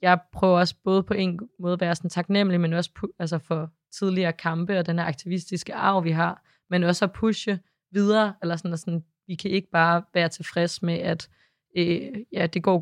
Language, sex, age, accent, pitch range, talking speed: Danish, female, 20-39, native, 165-185 Hz, 210 wpm